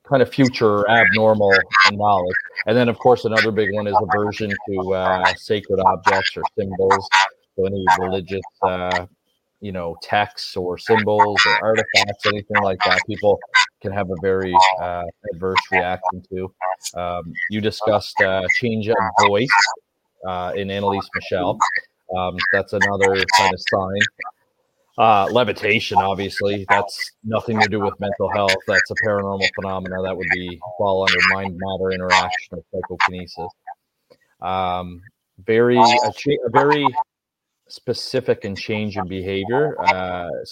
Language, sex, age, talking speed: English, male, 30-49, 140 wpm